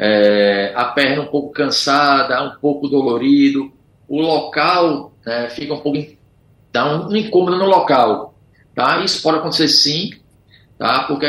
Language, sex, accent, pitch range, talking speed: Portuguese, male, Brazilian, 130-180 Hz, 135 wpm